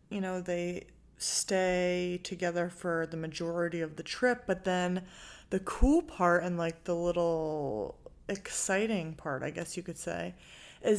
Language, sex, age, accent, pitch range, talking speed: English, female, 30-49, American, 170-195 Hz, 155 wpm